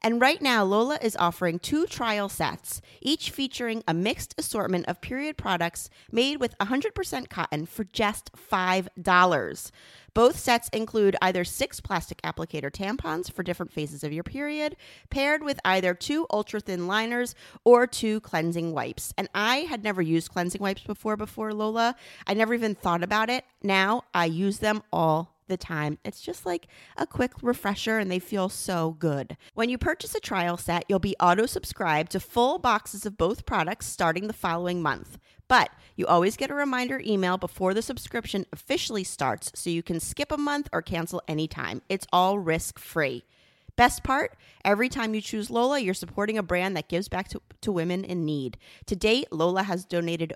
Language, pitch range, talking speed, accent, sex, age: English, 175-235 Hz, 180 wpm, American, female, 30-49